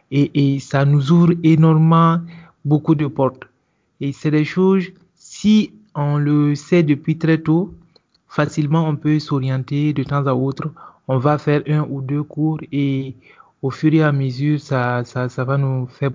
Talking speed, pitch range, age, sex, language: 175 wpm, 130-155 Hz, 30-49, male, French